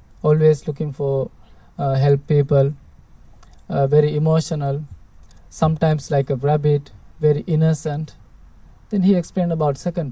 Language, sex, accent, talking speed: English, male, Indian, 120 wpm